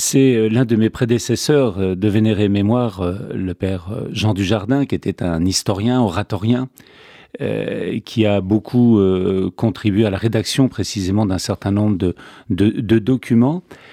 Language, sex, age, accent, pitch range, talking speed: French, male, 40-59, French, 100-125 Hz, 140 wpm